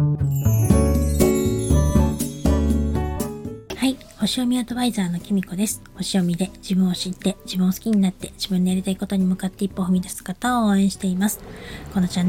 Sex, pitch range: female, 180-210 Hz